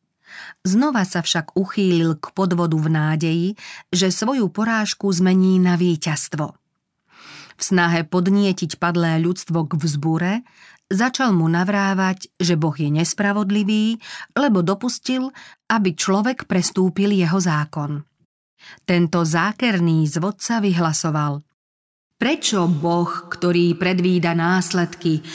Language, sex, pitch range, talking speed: Slovak, female, 165-200 Hz, 105 wpm